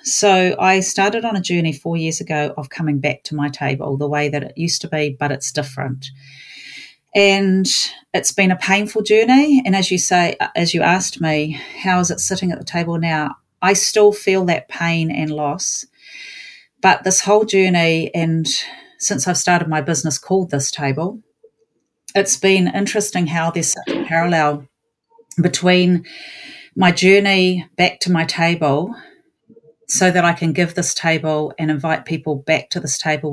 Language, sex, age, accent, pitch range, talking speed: English, female, 40-59, Australian, 155-190 Hz, 175 wpm